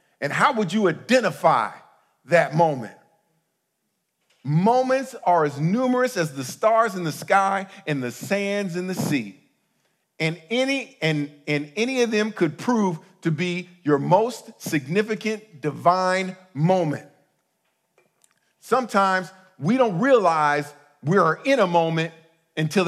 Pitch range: 160-205 Hz